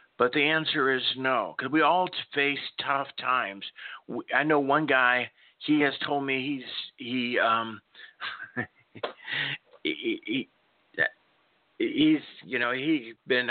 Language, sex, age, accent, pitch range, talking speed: English, male, 40-59, American, 115-155 Hz, 140 wpm